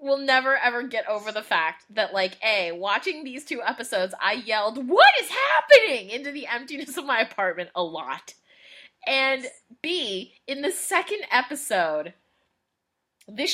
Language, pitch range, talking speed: English, 215-300 Hz, 150 wpm